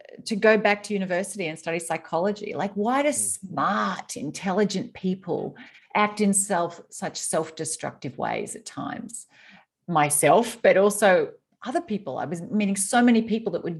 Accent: Australian